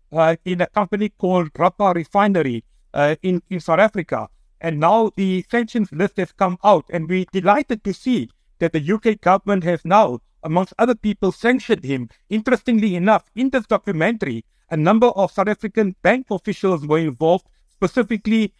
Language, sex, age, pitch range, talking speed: English, male, 60-79, 180-220 Hz, 165 wpm